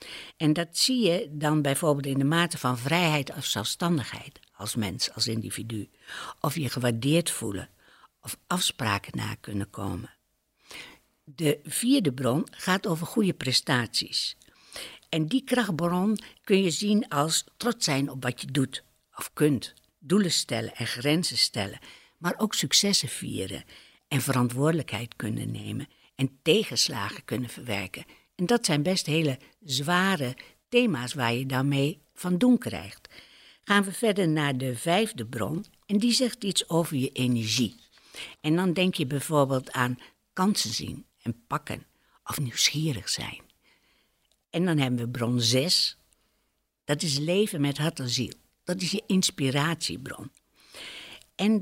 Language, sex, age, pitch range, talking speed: Dutch, female, 60-79, 130-185 Hz, 145 wpm